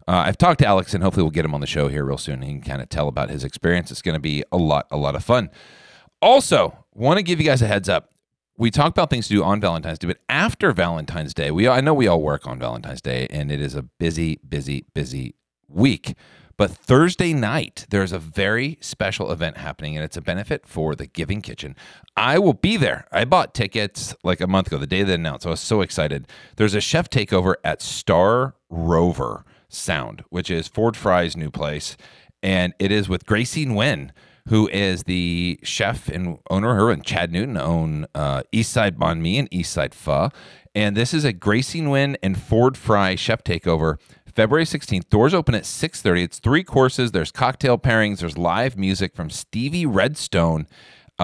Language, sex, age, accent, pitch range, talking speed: English, male, 40-59, American, 85-120 Hz, 215 wpm